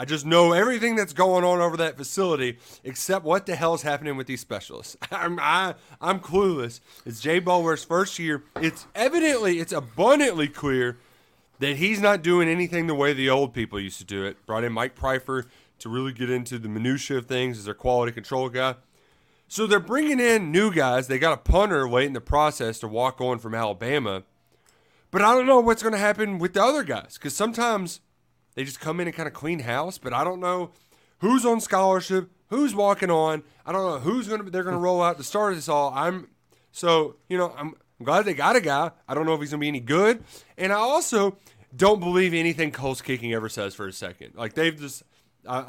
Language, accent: English, American